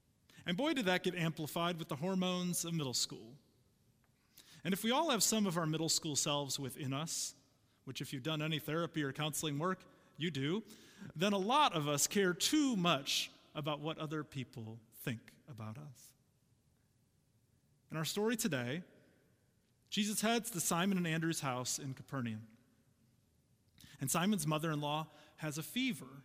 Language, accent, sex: English, American, male